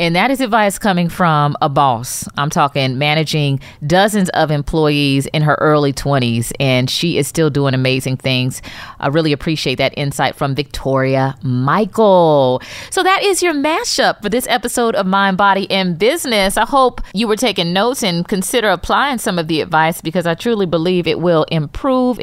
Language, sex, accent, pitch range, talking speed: English, female, American, 155-210 Hz, 180 wpm